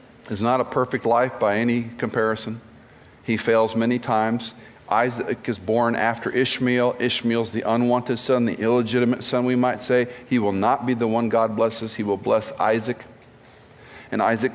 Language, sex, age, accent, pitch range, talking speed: English, male, 50-69, American, 110-130 Hz, 170 wpm